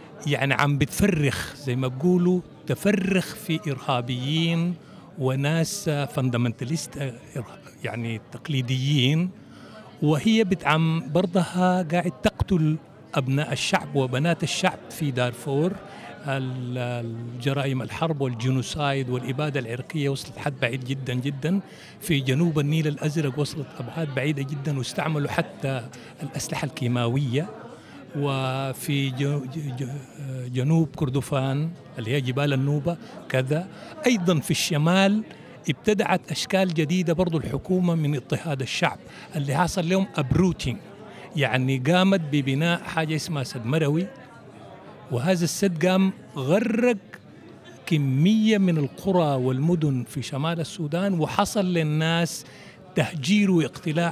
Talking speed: 100 wpm